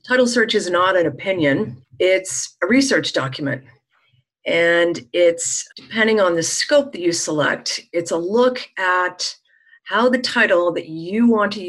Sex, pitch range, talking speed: female, 170-205 Hz, 155 wpm